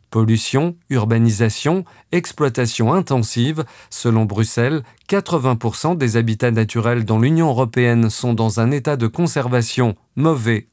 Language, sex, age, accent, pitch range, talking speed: French, male, 40-59, French, 110-145 Hz, 110 wpm